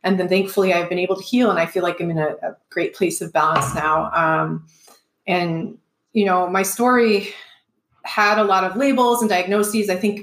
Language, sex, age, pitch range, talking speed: English, female, 30-49, 175-205 Hz, 210 wpm